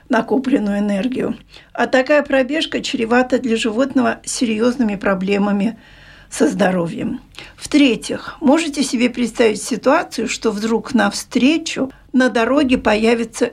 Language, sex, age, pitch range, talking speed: Russian, female, 50-69, 225-270 Hz, 100 wpm